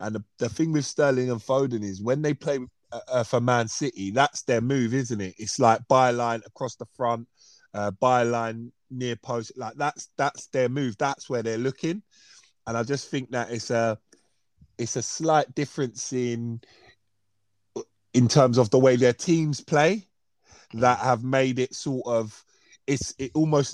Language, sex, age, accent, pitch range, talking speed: English, male, 20-39, British, 115-135 Hz, 175 wpm